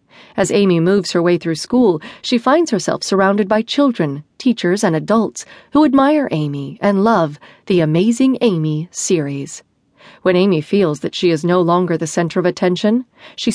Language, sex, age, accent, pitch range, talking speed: English, female, 40-59, American, 170-235 Hz, 170 wpm